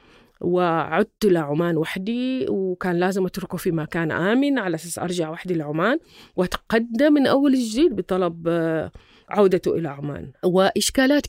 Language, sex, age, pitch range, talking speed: Arabic, female, 30-49, 180-235 Hz, 135 wpm